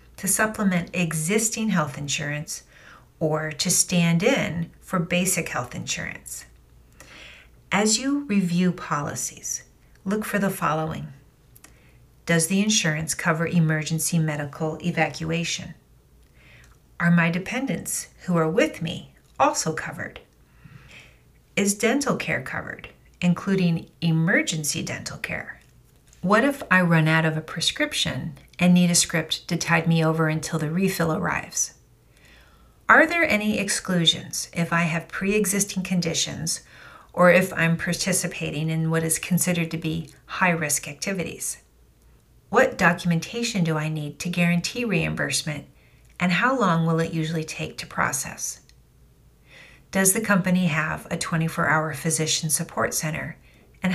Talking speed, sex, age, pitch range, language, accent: 125 wpm, female, 40-59, 155-185 Hz, English, American